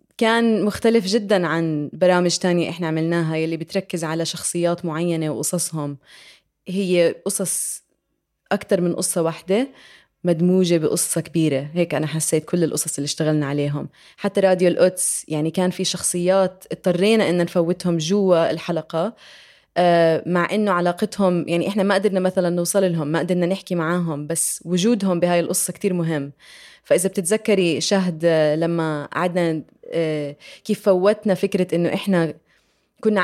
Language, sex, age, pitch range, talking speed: Arabic, female, 20-39, 165-190 Hz, 135 wpm